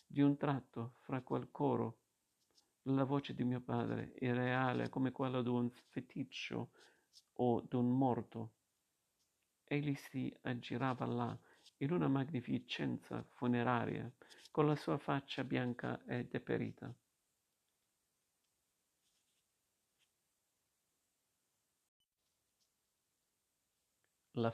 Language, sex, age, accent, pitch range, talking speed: Italian, male, 50-69, native, 115-130 Hz, 90 wpm